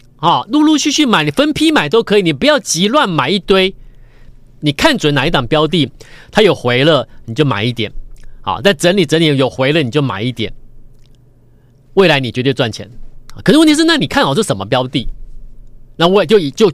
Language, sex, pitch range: Chinese, male, 120-160 Hz